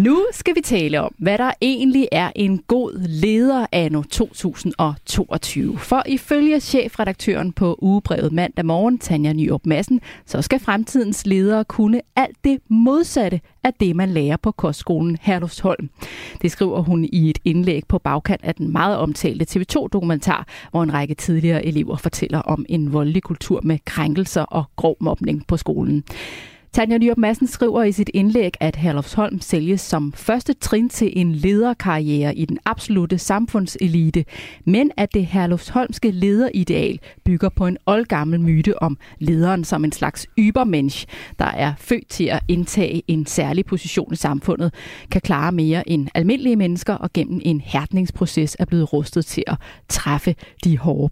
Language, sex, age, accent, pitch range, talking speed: Danish, female, 30-49, native, 160-205 Hz, 155 wpm